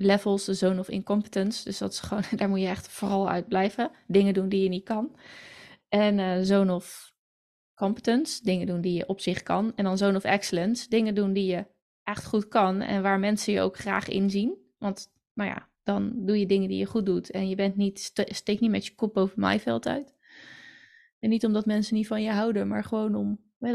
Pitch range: 195-220 Hz